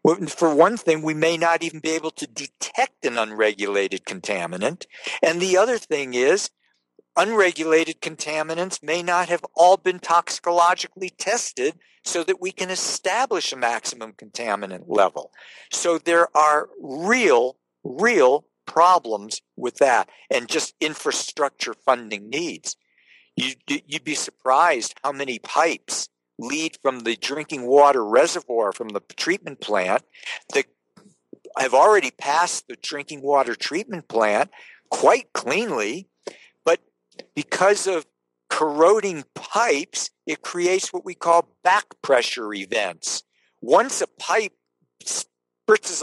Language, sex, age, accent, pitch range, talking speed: English, male, 50-69, American, 140-185 Hz, 125 wpm